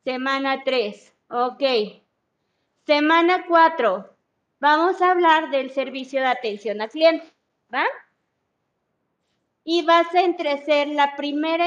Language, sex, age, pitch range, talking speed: Spanish, female, 30-49, 250-335 Hz, 110 wpm